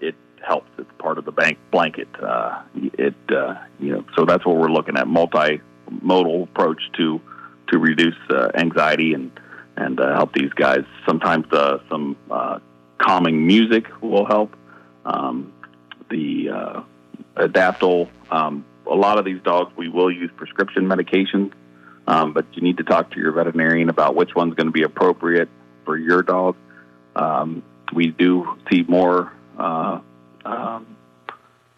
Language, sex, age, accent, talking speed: English, male, 40-59, American, 155 wpm